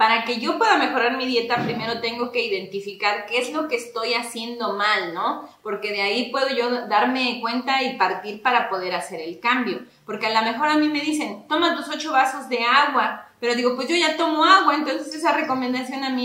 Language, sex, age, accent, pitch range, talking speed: Spanish, female, 30-49, Mexican, 205-255 Hz, 220 wpm